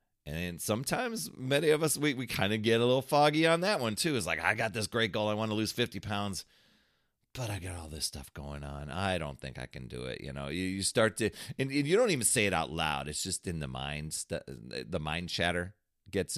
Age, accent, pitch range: 40-59, American, 80-110 Hz